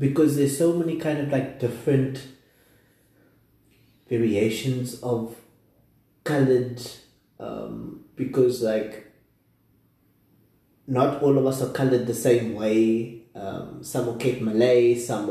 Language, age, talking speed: English, 20-39, 115 wpm